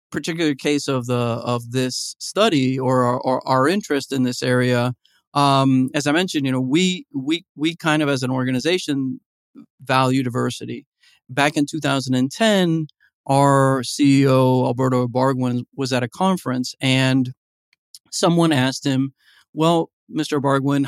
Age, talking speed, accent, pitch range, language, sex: 40-59, 140 wpm, American, 125-145 Hz, English, male